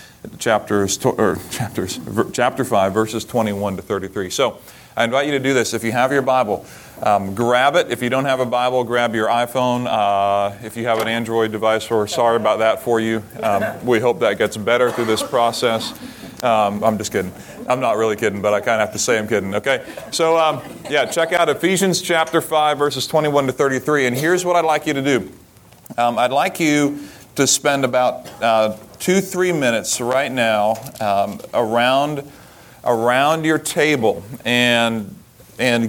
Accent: American